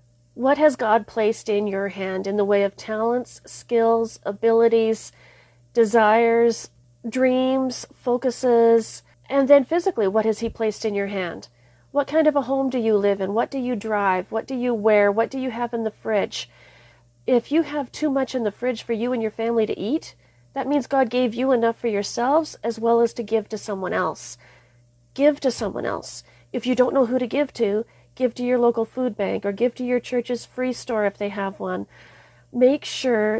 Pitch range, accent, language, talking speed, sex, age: 205-250 Hz, American, English, 205 wpm, female, 40-59